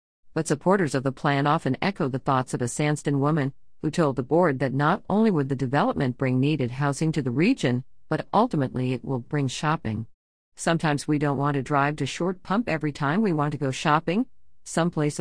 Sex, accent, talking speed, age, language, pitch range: female, American, 205 wpm, 50-69, English, 140-180 Hz